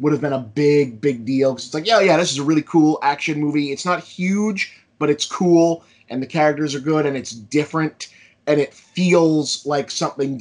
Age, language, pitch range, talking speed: 20-39, English, 140-170 Hz, 220 wpm